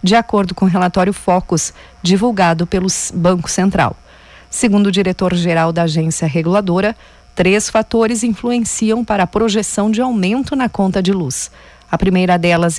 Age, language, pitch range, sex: 40-59, Portuguese, 180-220 Hz, female